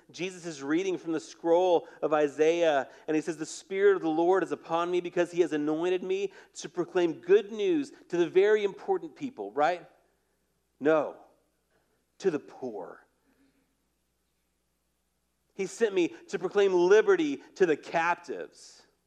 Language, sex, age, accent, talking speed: English, male, 40-59, American, 150 wpm